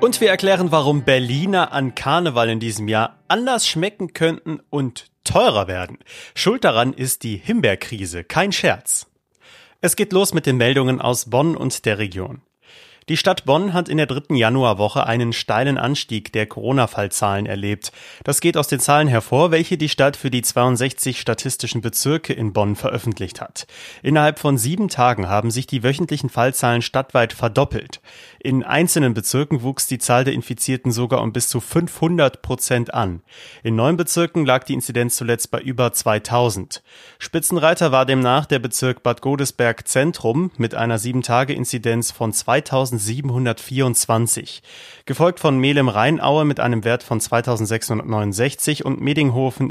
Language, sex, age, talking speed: German, male, 30-49, 150 wpm